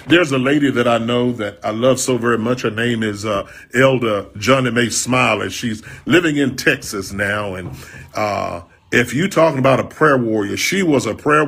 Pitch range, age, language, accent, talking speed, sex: 115-155 Hz, 40-59, English, American, 200 wpm, male